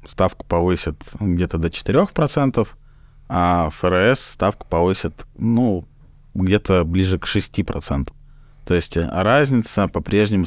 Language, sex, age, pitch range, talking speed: Russian, male, 20-39, 85-110 Hz, 105 wpm